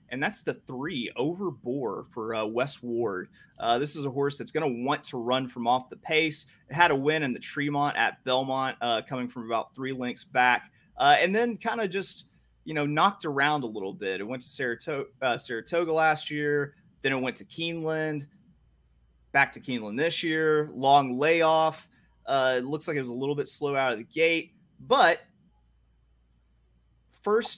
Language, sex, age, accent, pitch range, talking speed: English, male, 30-49, American, 120-155 Hz, 190 wpm